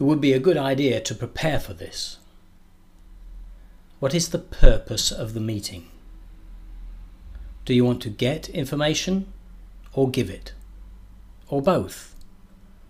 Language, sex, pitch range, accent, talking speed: English, male, 90-130 Hz, British, 130 wpm